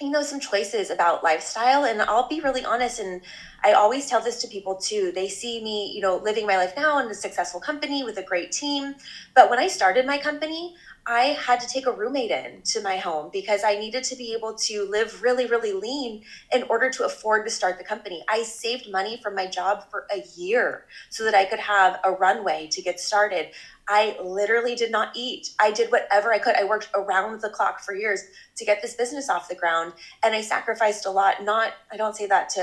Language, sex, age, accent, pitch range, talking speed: English, female, 20-39, American, 190-235 Hz, 230 wpm